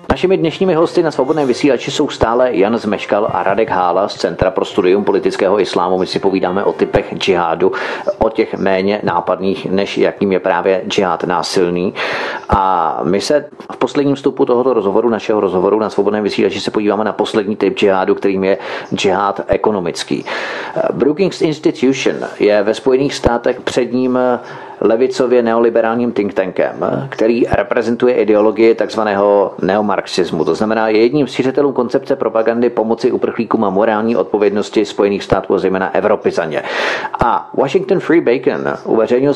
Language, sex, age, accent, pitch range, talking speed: Czech, male, 40-59, native, 105-140 Hz, 145 wpm